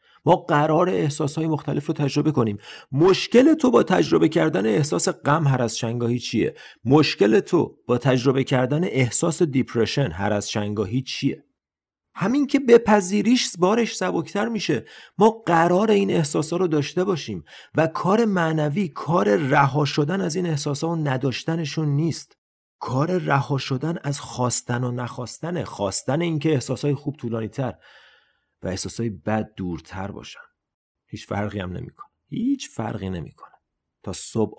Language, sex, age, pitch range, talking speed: Persian, male, 30-49, 105-160 Hz, 140 wpm